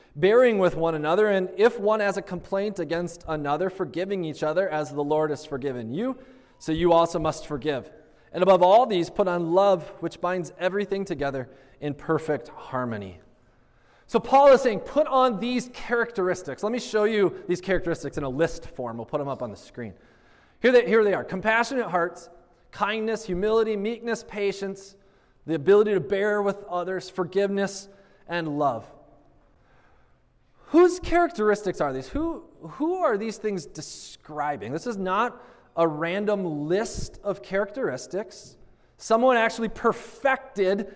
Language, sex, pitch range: English, male, 160-230 Hz